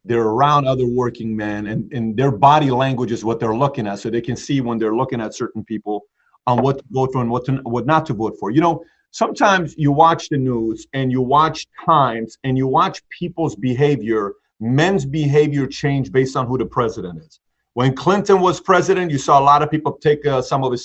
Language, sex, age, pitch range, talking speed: English, male, 40-59, 130-165 Hz, 220 wpm